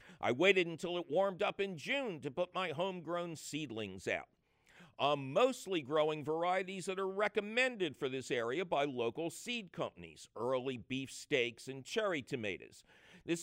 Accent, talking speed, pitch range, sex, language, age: American, 155 wpm, 130-185 Hz, male, English, 50-69